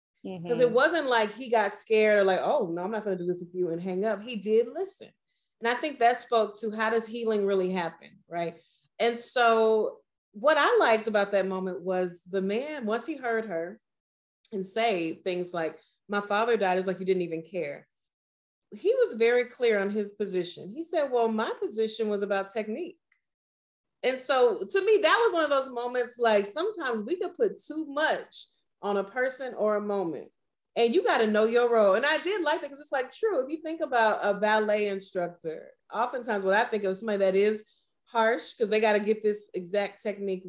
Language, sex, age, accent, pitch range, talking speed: English, female, 30-49, American, 190-245 Hz, 210 wpm